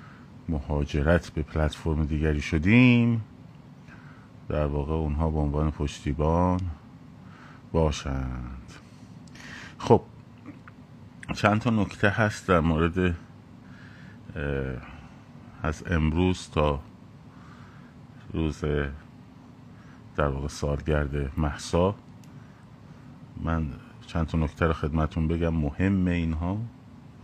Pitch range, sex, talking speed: 75-100 Hz, male, 80 wpm